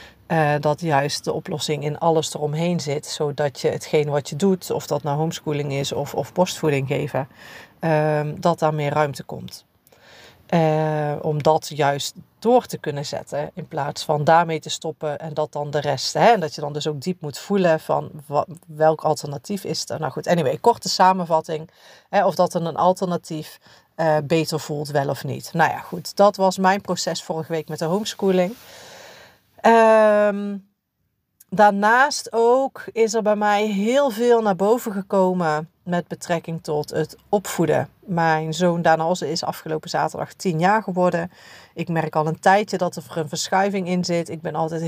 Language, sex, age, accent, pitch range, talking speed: Dutch, female, 40-59, Dutch, 155-185 Hz, 180 wpm